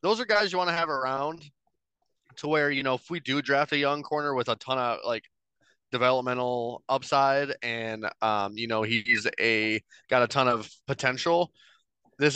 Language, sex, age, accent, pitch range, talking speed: English, male, 20-39, American, 120-150 Hz, 190 wpm